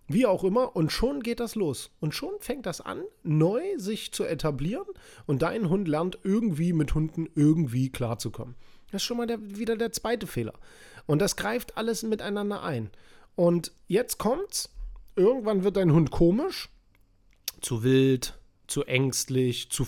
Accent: German